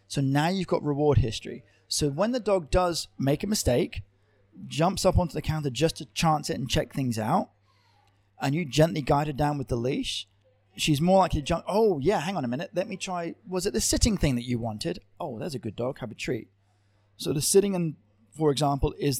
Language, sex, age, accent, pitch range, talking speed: English, male, 30-49, British, 110-155 Hz, 225 wpm